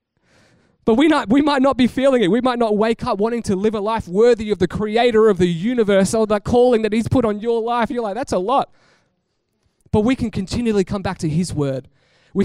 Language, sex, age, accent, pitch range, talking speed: English, male, 20-39, Australian, 155-210 Hz, 235 wpm